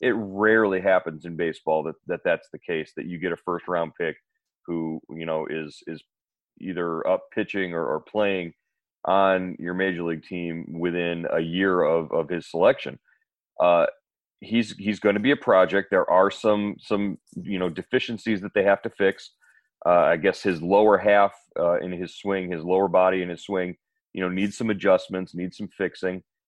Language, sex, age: English, male, 30-49